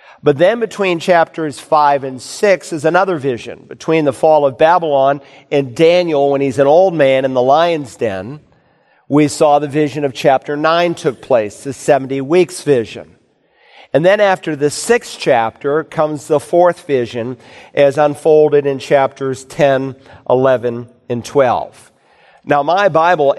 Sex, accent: male, American